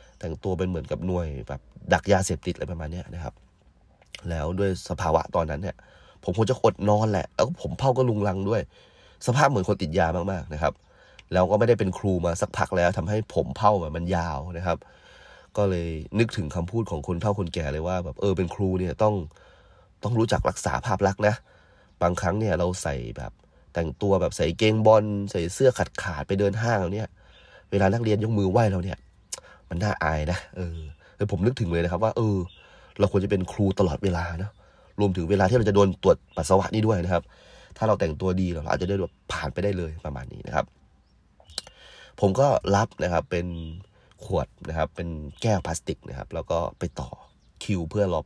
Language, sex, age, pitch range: Thai, male, 30-49, 85-105 Hz